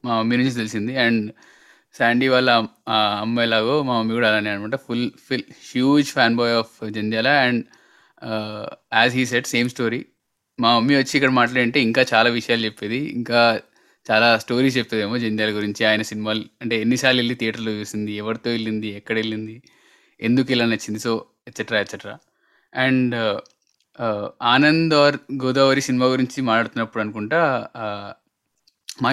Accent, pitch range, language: native, 110-130 Hz, Telugu